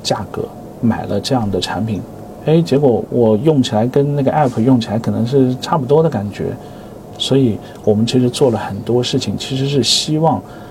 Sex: male